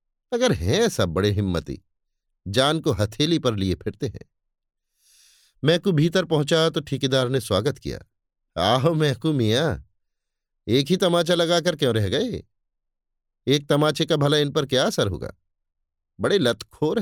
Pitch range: 100-160 Hz